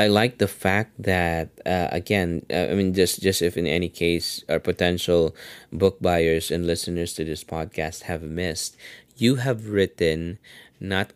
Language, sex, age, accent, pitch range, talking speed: English, male, 20-39, Filipino, 85-95 Hz, 160 wpm